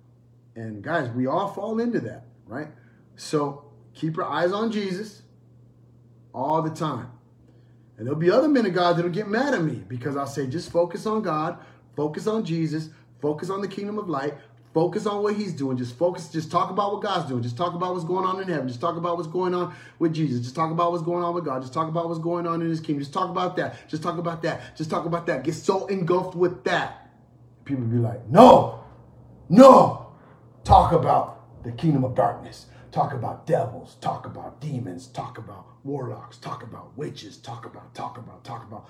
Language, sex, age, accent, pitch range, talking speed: English, male, 30-49, American, 120-175 Hz, 210 wpm